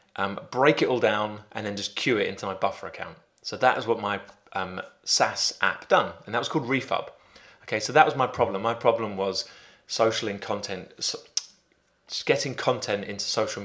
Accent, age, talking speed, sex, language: British, 30-49, 200 wpm, male, English